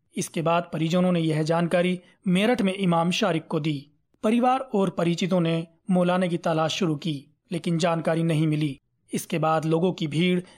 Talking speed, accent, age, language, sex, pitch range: 170 wpm, native, 30-49, Hindi, male, 160-190 Hz